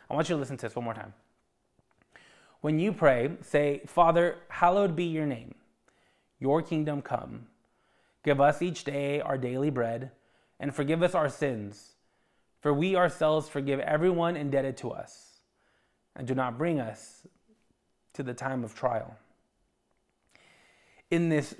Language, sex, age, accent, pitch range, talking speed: English, male, 20-39, American, 140-185 Hz, 150 wpm